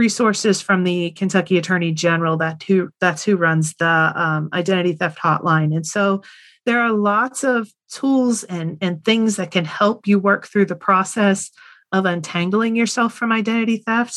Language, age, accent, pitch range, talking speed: English, 30-49, American, 175-210 Hz, 160 wpm